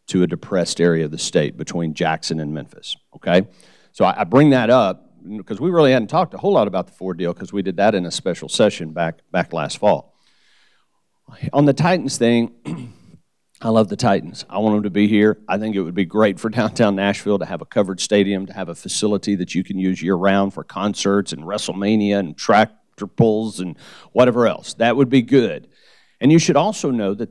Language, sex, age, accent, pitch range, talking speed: English, male, 50-69, American, 100-125 Hz, 220 wpm